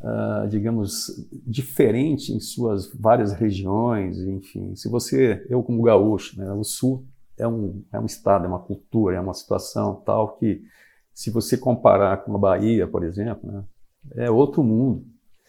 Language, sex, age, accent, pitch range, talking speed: Portuguese, male, 50-69, Brazilian, 105-135 Hz, 160 wpm